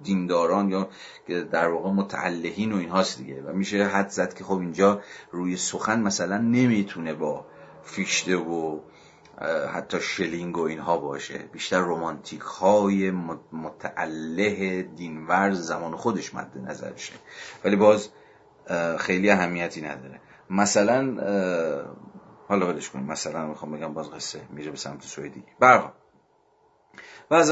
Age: 40-59